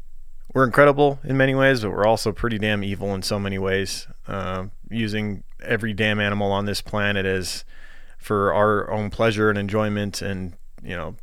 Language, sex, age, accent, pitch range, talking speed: English, male, 20-39, American, 95-110 Hz, 175 wpm